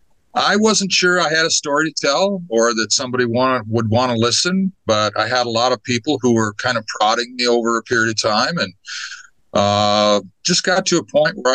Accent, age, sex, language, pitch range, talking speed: American, 50-69, male, English, 105-130 Hz, 225 wpm